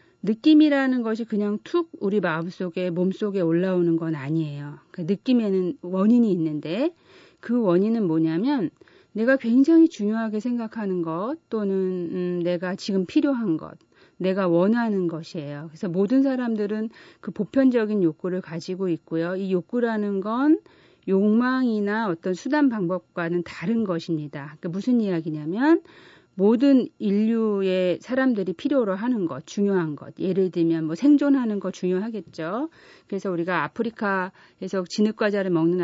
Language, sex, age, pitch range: Korean, female, 40-59, 175-235 Hz